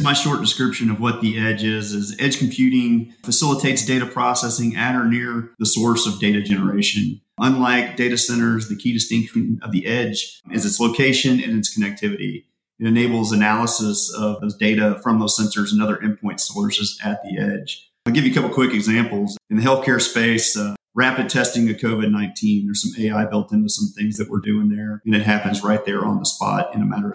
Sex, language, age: male, English, 30-49